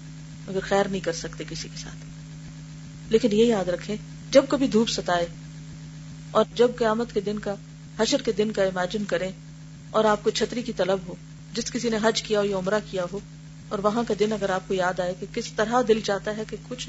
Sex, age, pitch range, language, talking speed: female, 40-59, 155-235 Hz, Urdu, 105 wpm